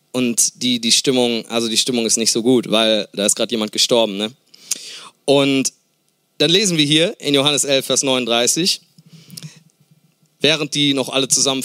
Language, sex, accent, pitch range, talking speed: German, male, German, 130-170 Hz, 170 wpm